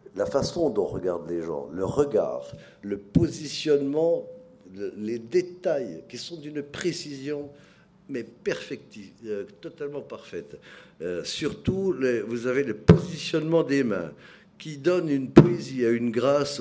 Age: 50-69